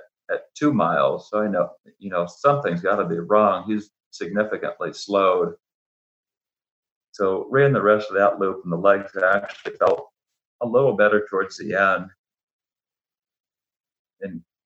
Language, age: English, 40-59